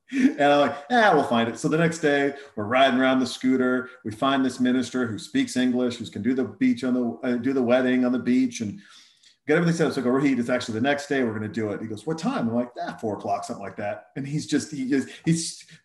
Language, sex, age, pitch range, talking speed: English, male, 40-59, 125-170 Hz, 275 wpm